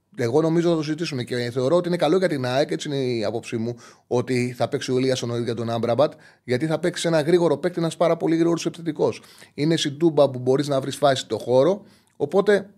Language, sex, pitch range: Greek, male, 120-155 Hz